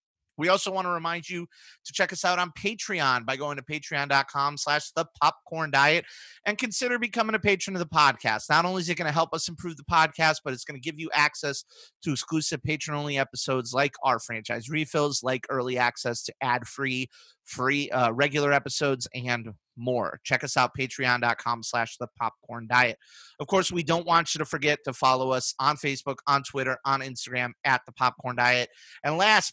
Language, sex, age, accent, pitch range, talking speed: English, male, 30-49, American, 130-170 Hz, 190 wpm